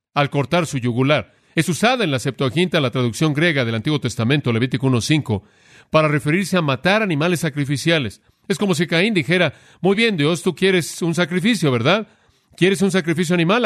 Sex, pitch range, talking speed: male, 130-175 Hz, 175 wpm